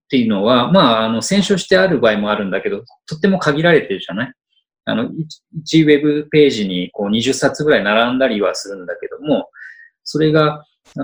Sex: male